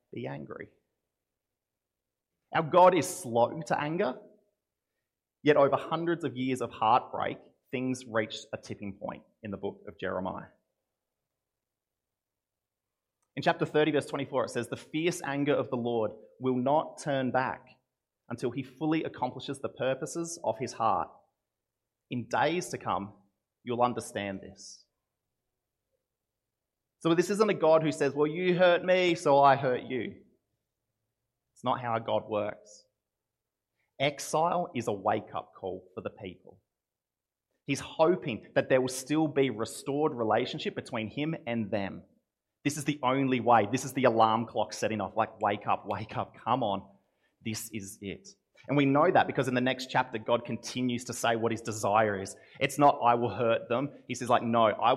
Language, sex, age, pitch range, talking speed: English, male, 30-49, 115-145 Hz, 165 wpm